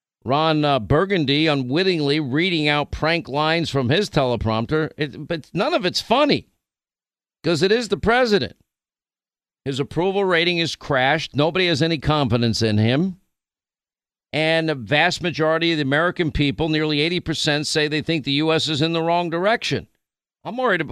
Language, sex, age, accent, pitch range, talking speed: English, male, 50-69, American, 135-160 Hz, 160 wpm